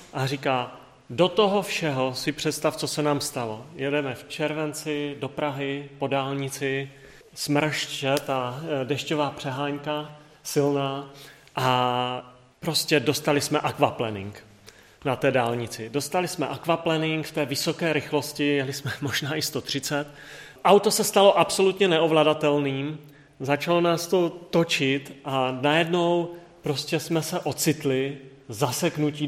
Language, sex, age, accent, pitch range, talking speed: Czech, male, 30-49, native, 135-165 Hz, 120 wpm